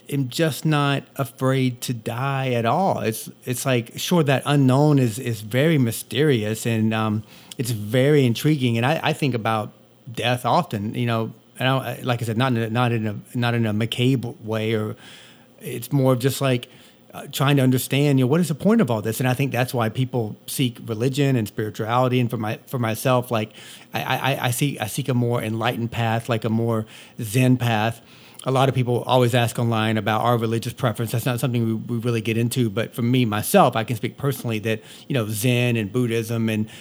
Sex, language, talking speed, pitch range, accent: male, English, 210 wpm, 115-135 Hz, American